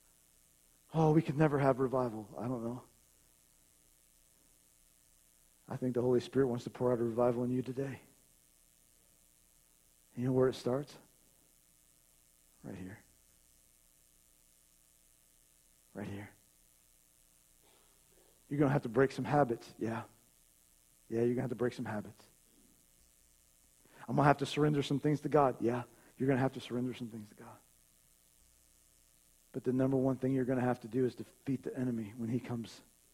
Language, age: English, 40-59